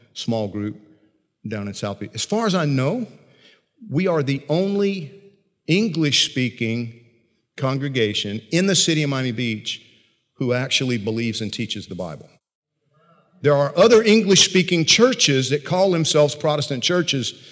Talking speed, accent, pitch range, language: 145 wpm, American, 115-155 Hz, English